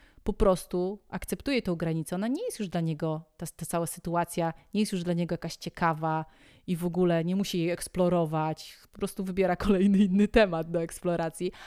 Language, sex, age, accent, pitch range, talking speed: Polish, female, 30-49, native, 165-190 Hz, 190 wpm